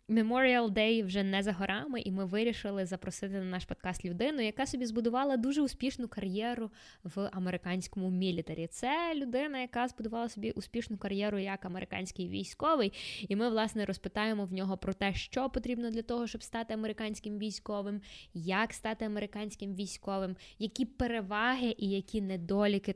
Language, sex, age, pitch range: Ukrainian, female, 20-39, 185-225 Hz